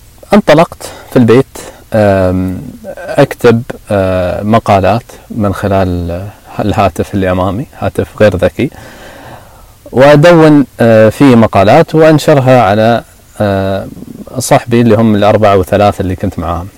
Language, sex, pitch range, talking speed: Arabic, male, 95-120 Hz, 95 wpm